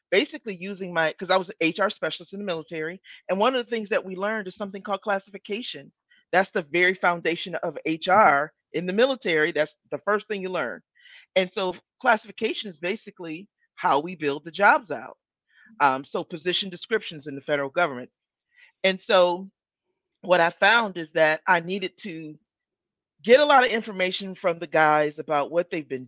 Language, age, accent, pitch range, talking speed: English, 40-59, American, 170-220 Hz, 185 wpm